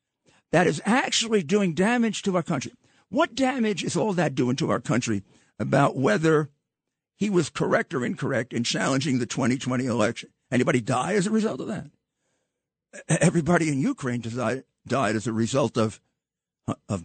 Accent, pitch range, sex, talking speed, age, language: American, 135-210 Hz, male, 160 wpm, 50-69, English